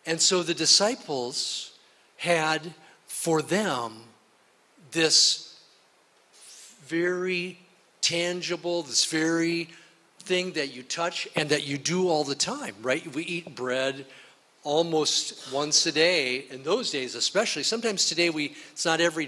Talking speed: 130 wpm